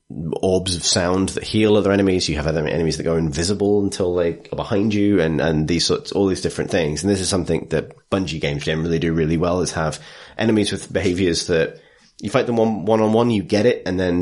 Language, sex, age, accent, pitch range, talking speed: English, male, 30-49, British, 80-100 Hz, 230 wpm